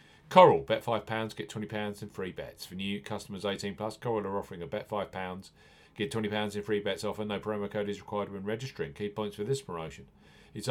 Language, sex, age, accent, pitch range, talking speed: English, male, 40-59, British, 100-120 Hz, 215 wpm